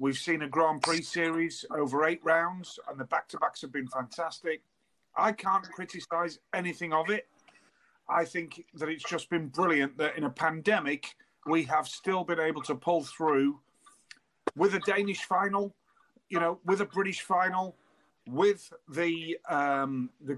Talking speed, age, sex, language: 160 wpm, 40-59, male, English